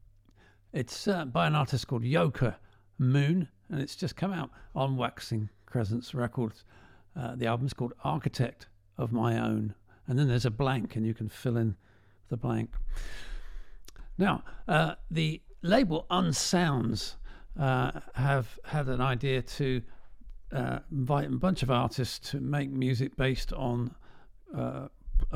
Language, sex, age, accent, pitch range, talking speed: English, male, 50-69, British, 110-135 Hz, 140 wpm